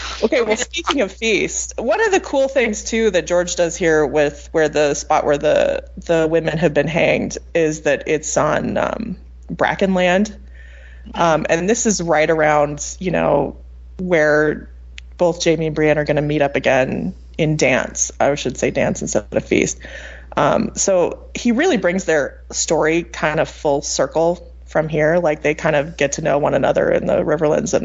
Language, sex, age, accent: English, female, 20-39, American